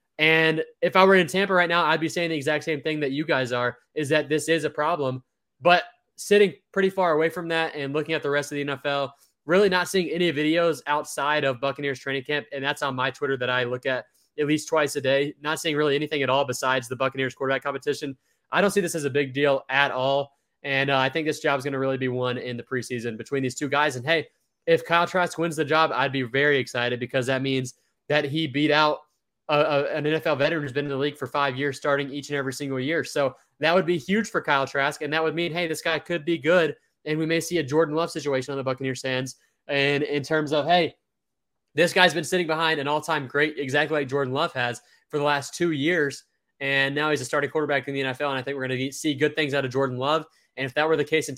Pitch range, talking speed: 135-160 Hz, 260 wpm